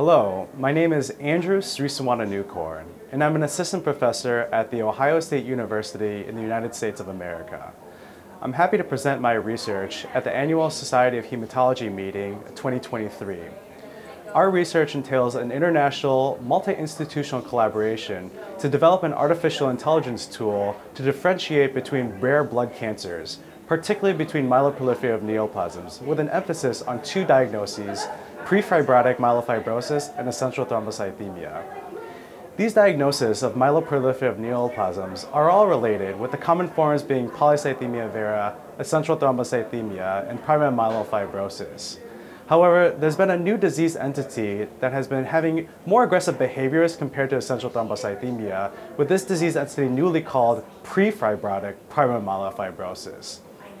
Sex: male